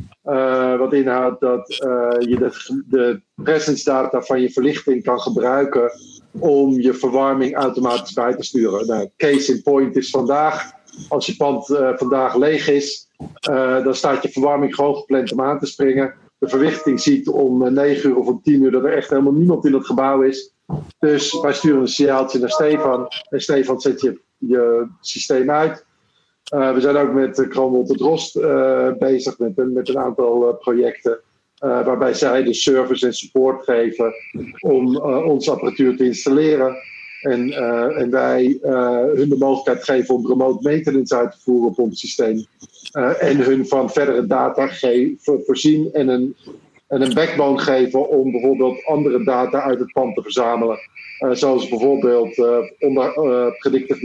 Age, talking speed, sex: 50-69, 180 wpm, male